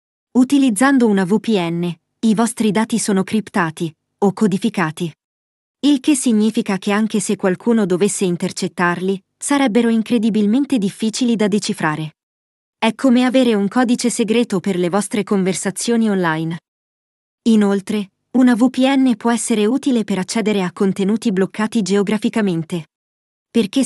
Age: 20-39